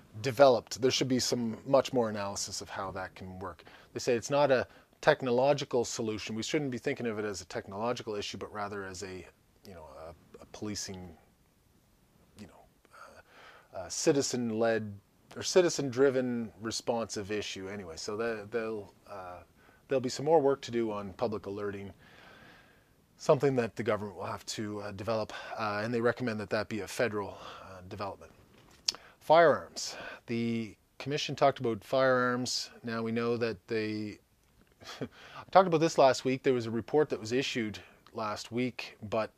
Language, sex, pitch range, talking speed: English, male, 105-130 Hz, 170 wpm